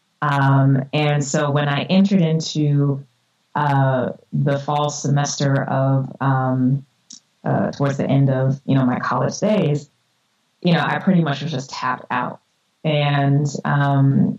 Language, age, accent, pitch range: English, 20-39, American, 135-155 Hz